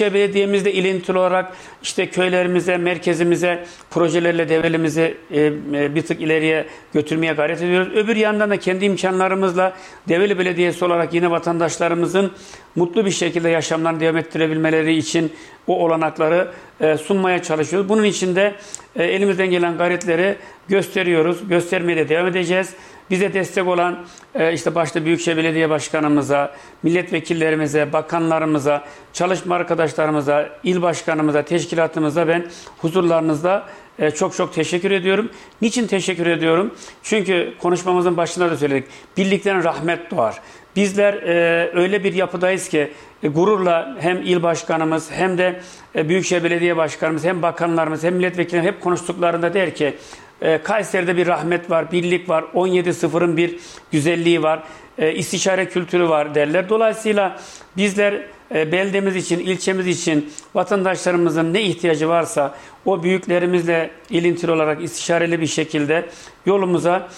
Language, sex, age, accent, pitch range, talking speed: Turkish, male, 60-79, native, 160-185 Hz, 115 wpm